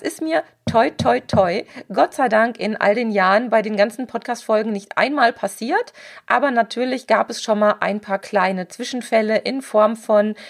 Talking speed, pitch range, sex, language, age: 185 wpm, 210-255 Hz, female, German, 40-59